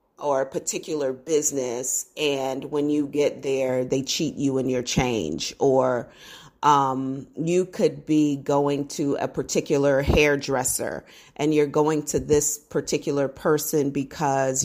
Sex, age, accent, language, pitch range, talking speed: female, 40-59, American, English, 130-145 Hz, 135 wpm